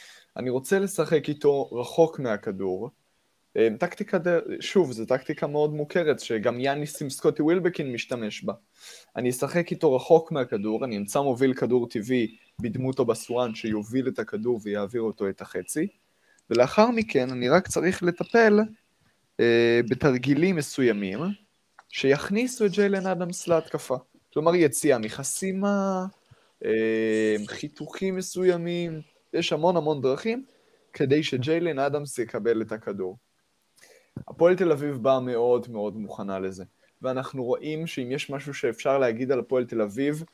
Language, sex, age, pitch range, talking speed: Hebrew, male, 20-39, 120-170 Hz, 130 wpm